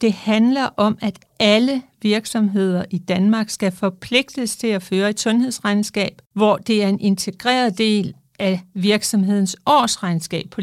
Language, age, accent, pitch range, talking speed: Danish, 60-79, native, 180-230 Hz, 140 wpm